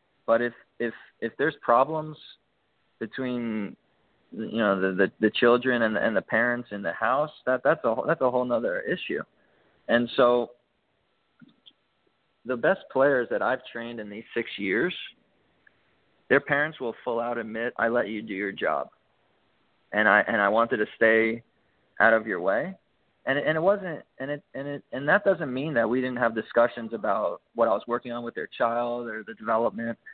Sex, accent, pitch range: male, American, 115-125 Hz